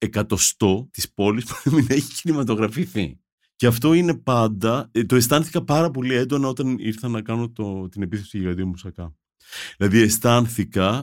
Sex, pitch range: male, 95-145 Hz